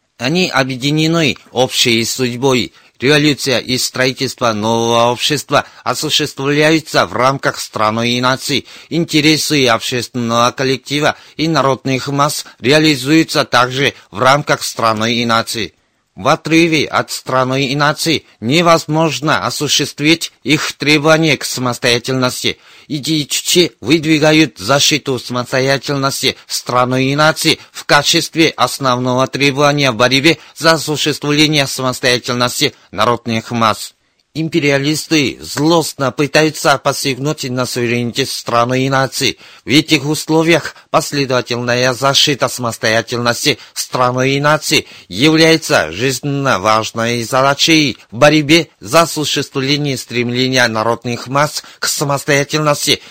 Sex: male